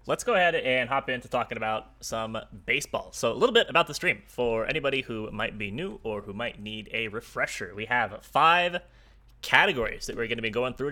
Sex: male